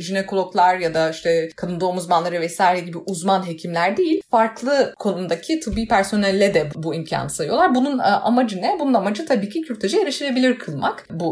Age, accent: 30-49, native